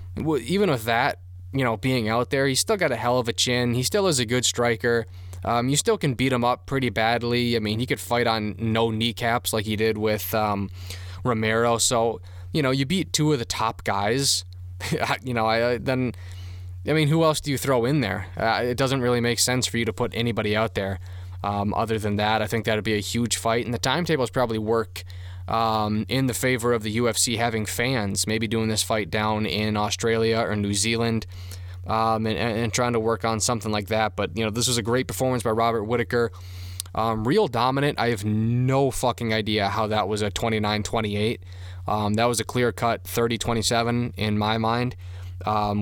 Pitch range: 105-125 Hz